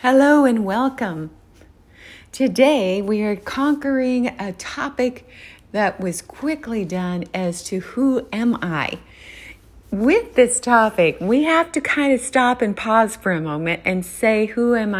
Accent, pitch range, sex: American, 185-255 Hz, female